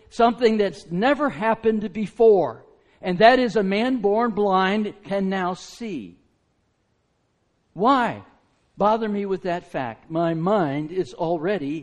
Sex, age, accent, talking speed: male, 60-79, American, 125 wpm